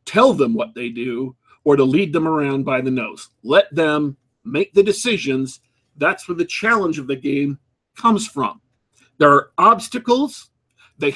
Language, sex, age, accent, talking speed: English, male, 50-69, American, 165 wpm